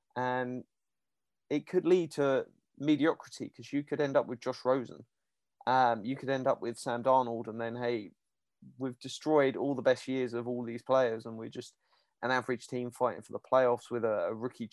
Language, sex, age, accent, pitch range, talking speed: English, male, 30-49, British, 125-150 Hz, 200 wpm